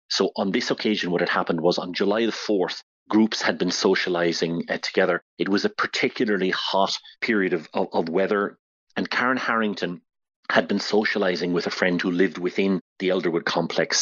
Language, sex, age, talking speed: English, male, 40-59, 180 wpm